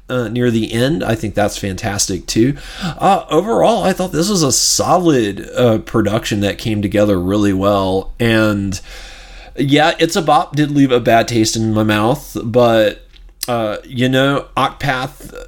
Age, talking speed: 30-49, 160 wpm